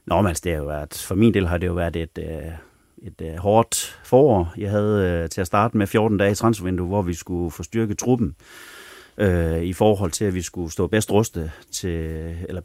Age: 30-49